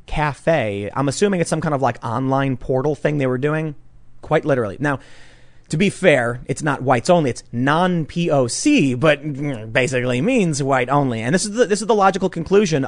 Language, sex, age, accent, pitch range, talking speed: English, male, 30-49, American, 125-160 Hz, 180 wpm